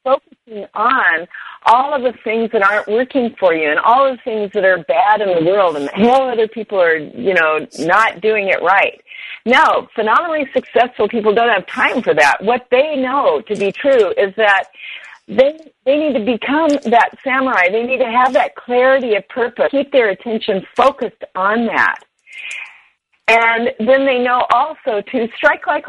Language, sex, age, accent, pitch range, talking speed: English, female, 50-69, American, 195-260 Hz, 185 wpm